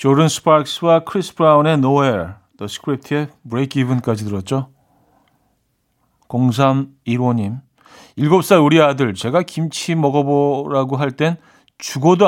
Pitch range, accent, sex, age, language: 115-160 Hz, native, male, 50-69, Korean